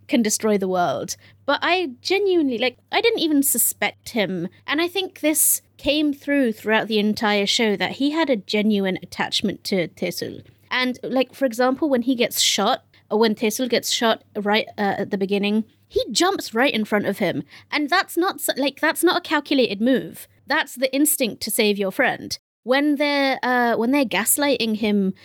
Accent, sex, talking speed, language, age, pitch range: British, female, 190 wpm, English, 30-49, 210-275 Hz